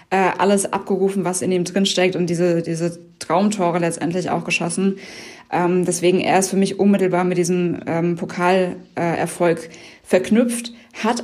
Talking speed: 140 wpm